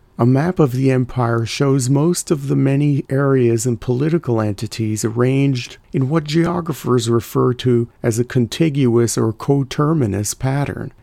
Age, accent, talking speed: 40-59, American, 140 wpm